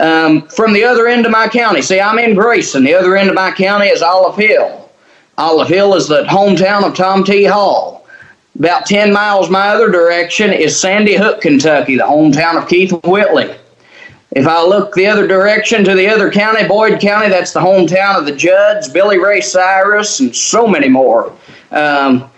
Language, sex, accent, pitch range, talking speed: English, male, American, 160-210 Hz, 190 wpm